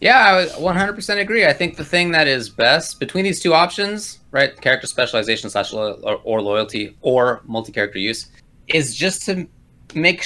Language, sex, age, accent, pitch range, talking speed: English, male, 20-39, American, 105-170 Hz, 175 wpm